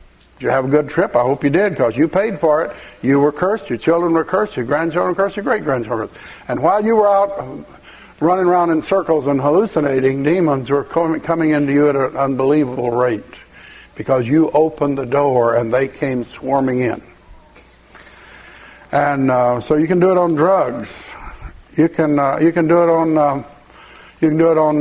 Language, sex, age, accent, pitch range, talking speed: English, male, 60-79, American, 130-160 Hz, 195 wpm